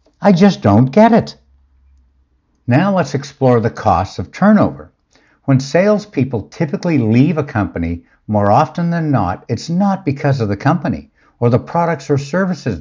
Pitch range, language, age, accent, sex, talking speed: 110-170 Hz, English, 60-79, American, male, 155 wpm